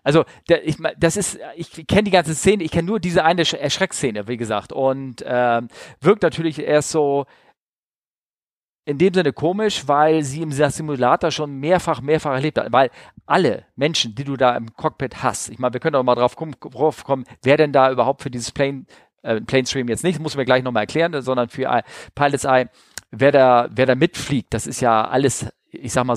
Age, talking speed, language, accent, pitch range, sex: 40-59, 200 wpm, German, German, 120-145 Hz, male